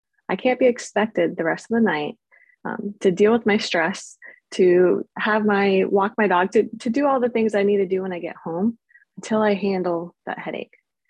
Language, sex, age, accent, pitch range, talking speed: English, female, 20-39, American, 185-230 Hz, 215 wpm